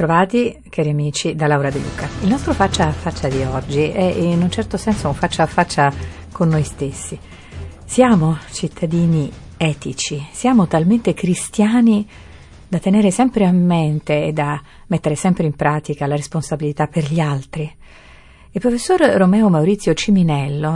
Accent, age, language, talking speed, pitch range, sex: native, 50-69, Italian, 155 wpm, 150-185 Hz, female